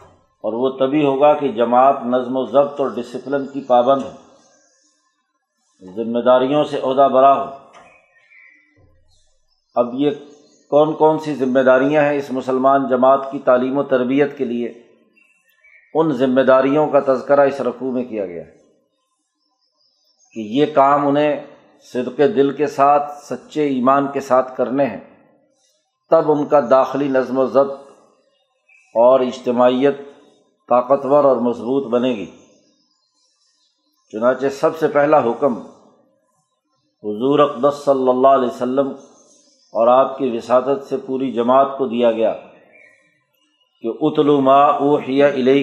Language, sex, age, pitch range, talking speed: Urdu, male, 50-69, 130-145 Hz, 135 wpm